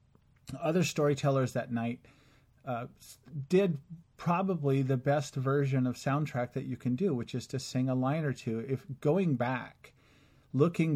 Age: 40-59